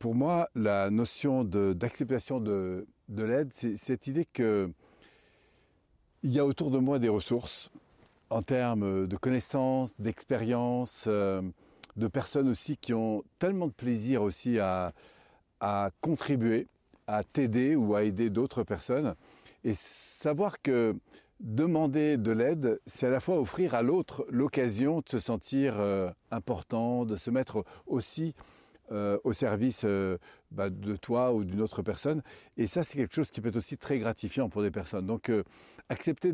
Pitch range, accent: 105-130 Hz, French